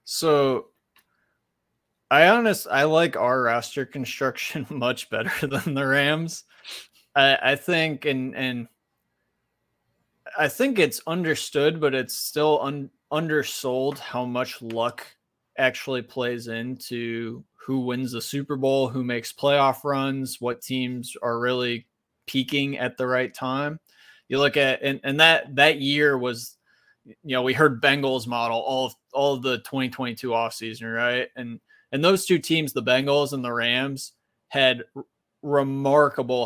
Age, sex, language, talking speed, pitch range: 20-39, male, English, 140 wpm, 125-140 Hz